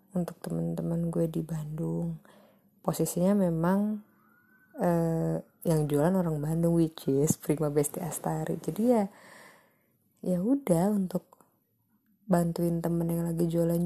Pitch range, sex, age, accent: 175-225 Hz, female, 20-39, Indonesian